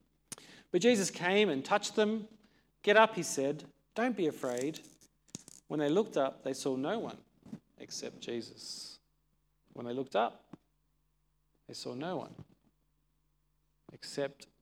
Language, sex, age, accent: English, male, 40-59, Australian